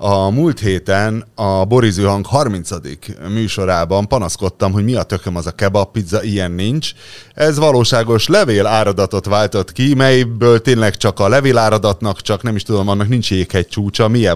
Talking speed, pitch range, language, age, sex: 155 wpm, 100-135 Hz, Hungarian, 30-49, male